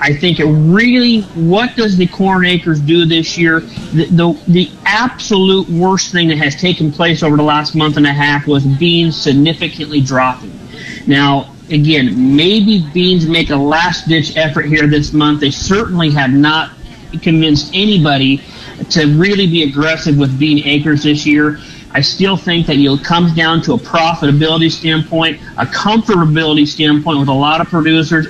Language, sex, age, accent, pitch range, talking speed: English, male, 40-59, American, 150-175 Hz, 165 wpm